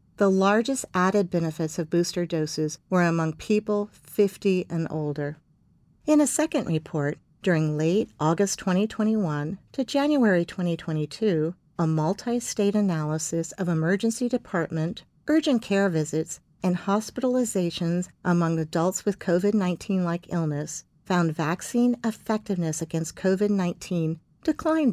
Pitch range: 155-205 Hz